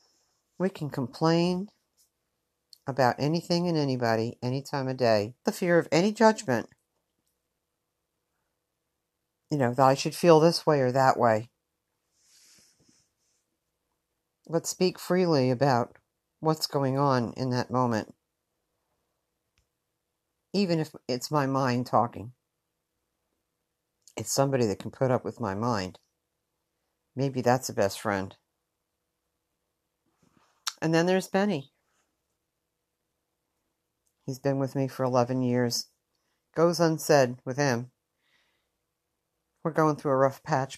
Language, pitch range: English, 120-160 Hz